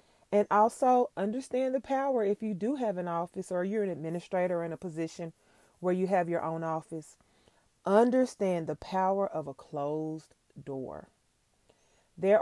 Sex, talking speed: female, 155 wpm